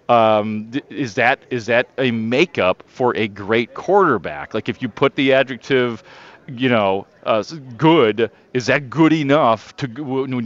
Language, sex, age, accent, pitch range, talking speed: English, male, 40-59, American, 115-135 Hz, 155 wpm